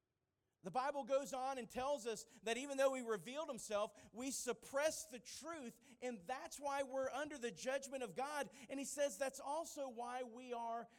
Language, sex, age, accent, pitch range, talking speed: English, male, 40-59, American, 180-245 Hz, 185 wpm